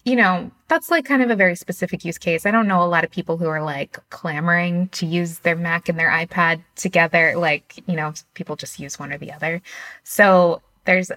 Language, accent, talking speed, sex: English, American, 225 wpm, female